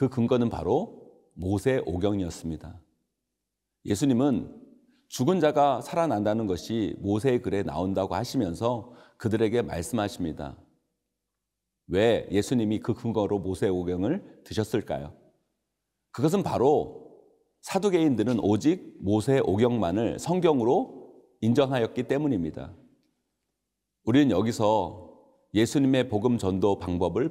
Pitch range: 95-130 Hz